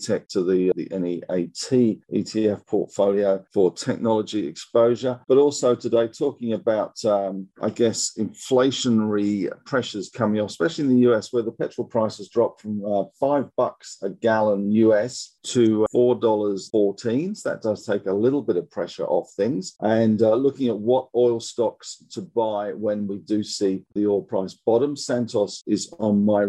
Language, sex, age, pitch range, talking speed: English, male, 50-69, 100-120 Hz, 160 wpm